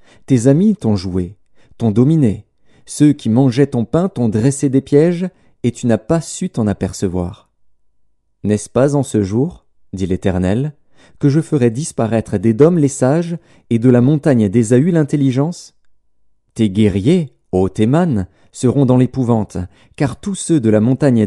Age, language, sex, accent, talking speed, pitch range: 40-59, French, male, French, 160 wpm, 105-145 Hz